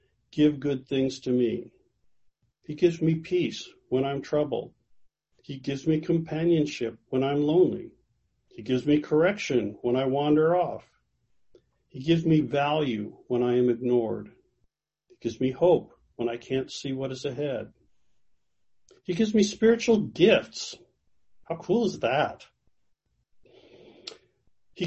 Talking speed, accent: 135 wpm, American